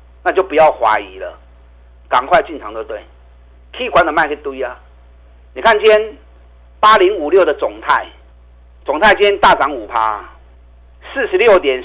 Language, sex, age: Chinese, male, 50-69